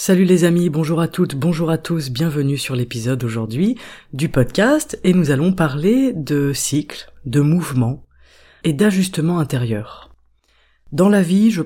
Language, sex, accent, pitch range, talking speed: French, female, French, 135-175 Hz, 155 wpm